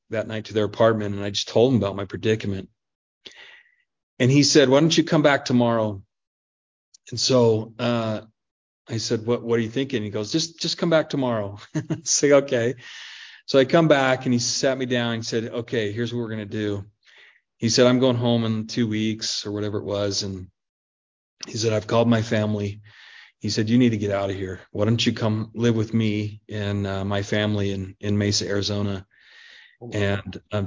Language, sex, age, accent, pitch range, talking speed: English, male, 40-59, American, 100-125 Hz, 205 wpm